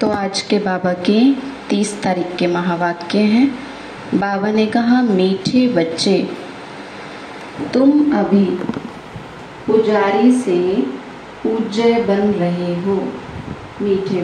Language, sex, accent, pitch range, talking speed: Hindi, female, native, 185-235 Hz, 100 wpm